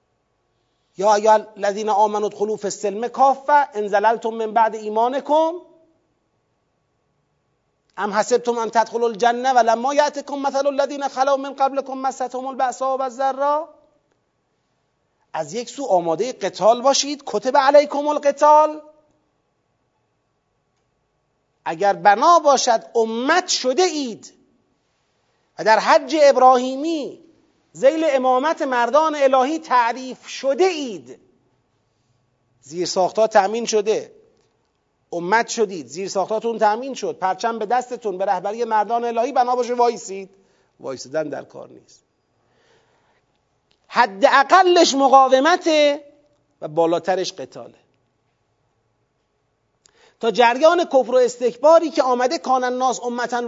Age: 40-59